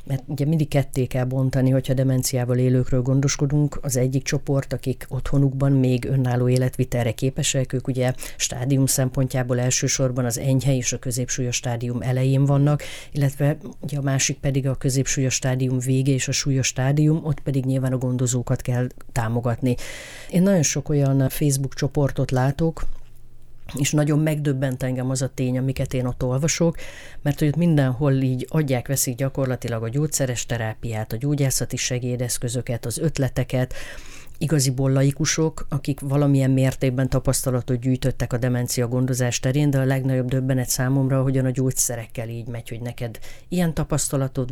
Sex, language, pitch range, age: female, Hungarian, 125-140 Hz, 30-49